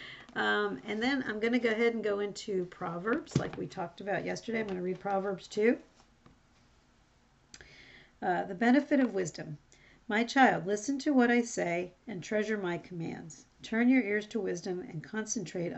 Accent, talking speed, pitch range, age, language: American, 170 wpm, 180-225 Hz, 50-69, English